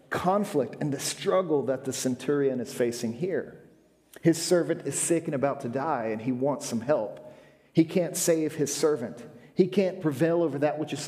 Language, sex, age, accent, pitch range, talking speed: English, male, 40-59, American, 145-180 Hz, 190 wpm